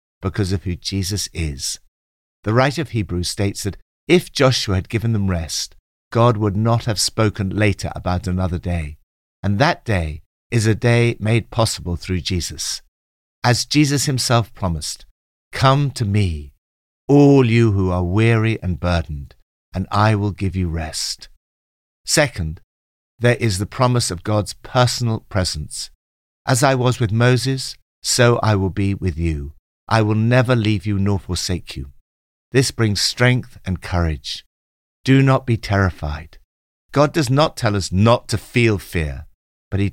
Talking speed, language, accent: 155 wpm, English, British